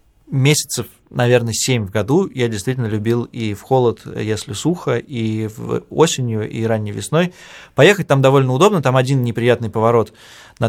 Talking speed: 155 wpm